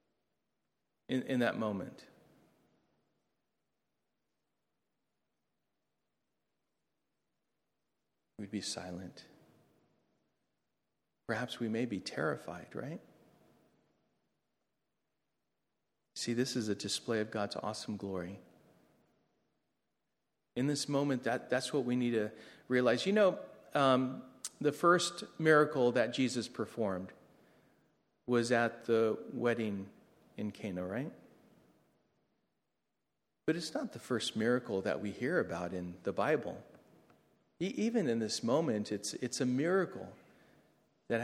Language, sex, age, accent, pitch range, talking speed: English, male, 40-59, American, 110-175 Hz, 105 wpm